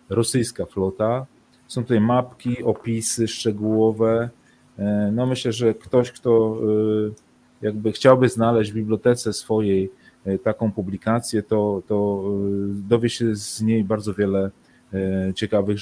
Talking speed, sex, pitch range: 110 wpm, male, 100-115 Hz